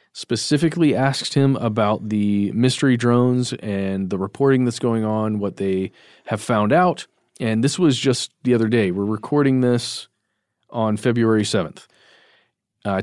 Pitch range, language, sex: 105-130 Hz, English, male